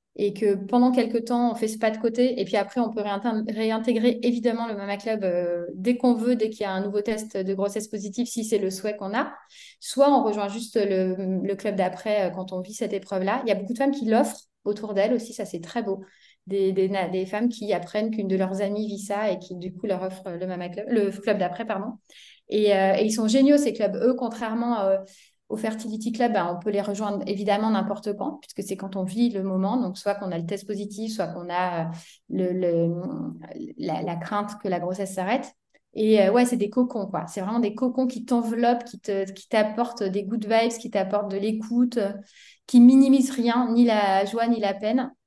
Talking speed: 230 wpm